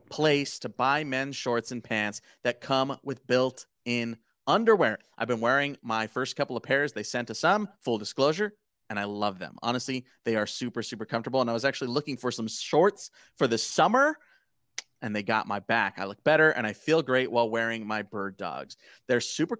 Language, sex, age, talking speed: English, male, 30-49, 200 wpm